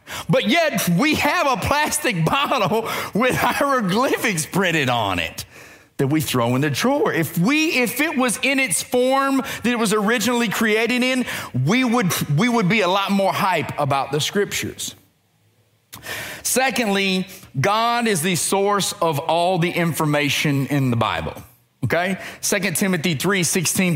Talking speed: 155 wpm